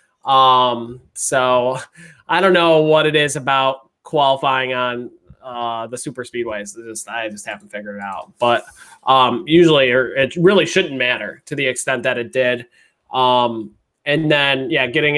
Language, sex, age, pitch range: English, male, 20-39, 125-155 Hz